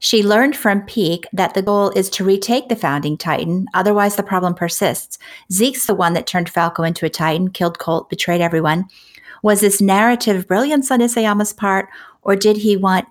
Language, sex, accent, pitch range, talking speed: English, female, American, 180-220 Hz, 190 wpm